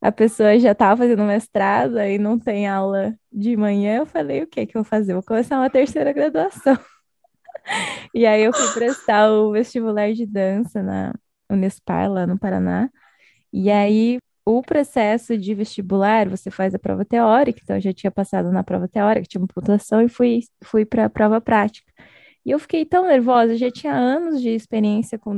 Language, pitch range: Portuguese, 205-245 Hz